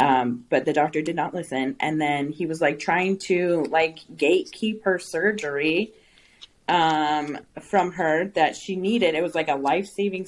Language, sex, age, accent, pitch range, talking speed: English, female, 20-39, American, 145-175 Hz, 170 wpm